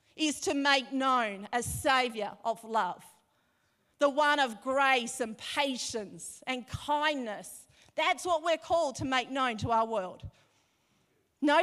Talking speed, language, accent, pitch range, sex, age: 140 wpm, English, Australian, 220-275 Hz, female, 40-59